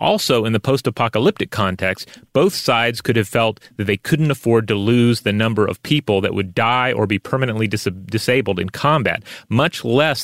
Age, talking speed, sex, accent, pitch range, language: 30-49, 180 wpm, male, American, 105-125 Hz, English